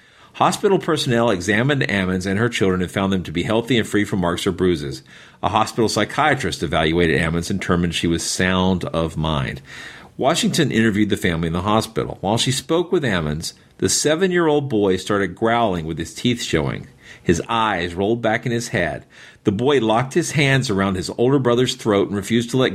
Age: 50-69